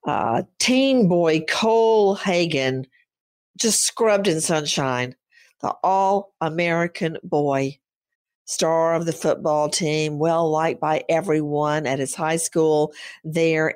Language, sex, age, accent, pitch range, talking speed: English, female, 50-69, American, 160-210 Hz, 115 wpm